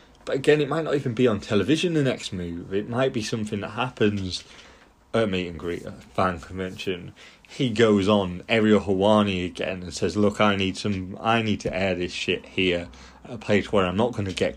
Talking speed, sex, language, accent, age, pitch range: 225 wpm, male, English, British, 30-49, 95-125 Hz